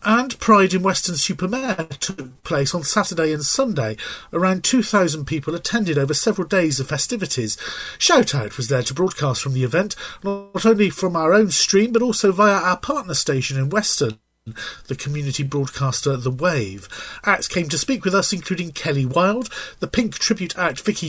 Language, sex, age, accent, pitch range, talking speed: English, male, 40-59, British, 140-195 Hz, 175 wpm